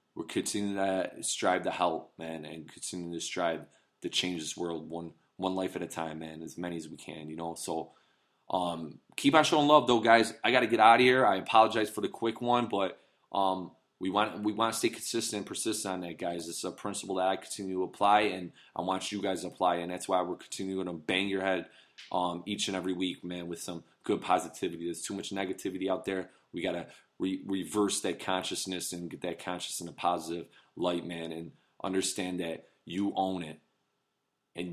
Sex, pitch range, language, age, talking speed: male, 85-100 Hz, English, 20-39, 215 wpm